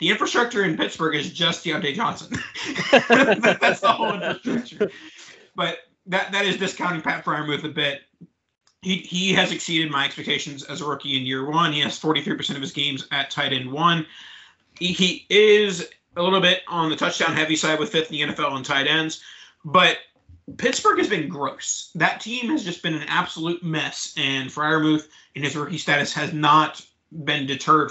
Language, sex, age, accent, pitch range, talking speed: English, male, 30-49, American, 145-175 Hz, 185 wpm